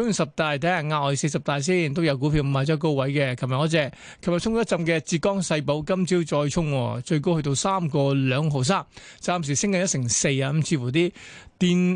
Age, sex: 20-39, male